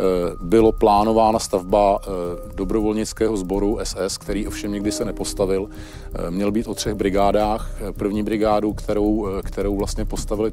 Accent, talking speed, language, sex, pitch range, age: native, 125 wpm, Czech, male, 95-110 Hz, 40-59